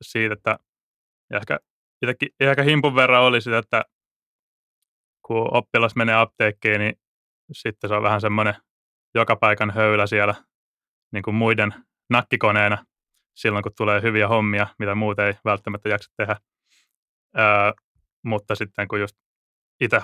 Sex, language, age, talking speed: male, Finnish, 20-39, 130 wpm